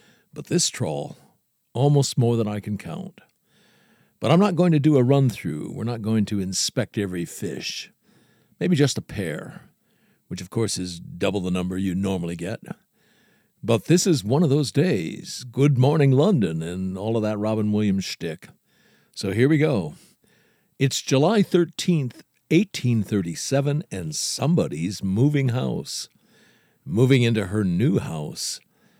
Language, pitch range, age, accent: English, 100-155 Hz, 60-79, American